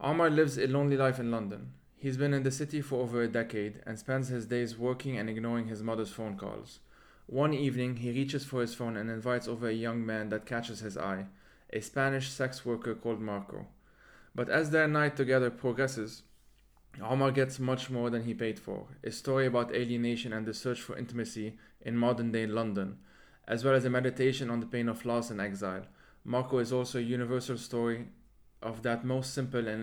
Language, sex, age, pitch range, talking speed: English, male, 20-39, 115-135 Hz, 200 wpm